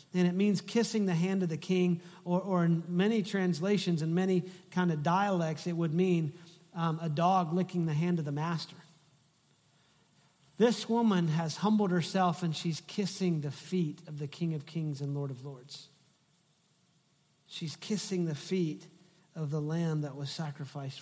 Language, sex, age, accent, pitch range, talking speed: English, male, 40-59, American, 150-175 Hz, 170 wpm